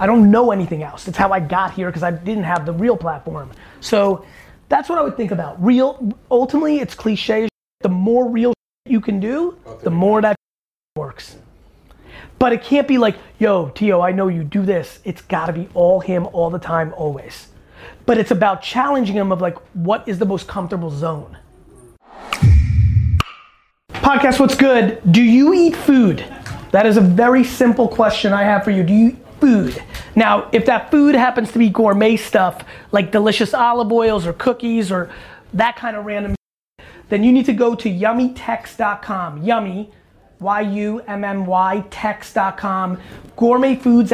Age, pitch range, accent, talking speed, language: 30-49, 190-240 Hz, American, 165 wpm, English